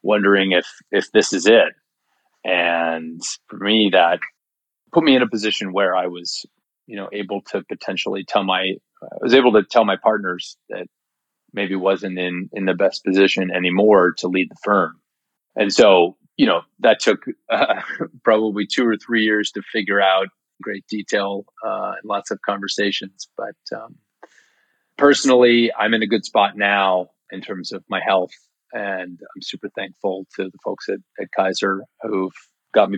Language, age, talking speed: English, 30-49, 170 wpm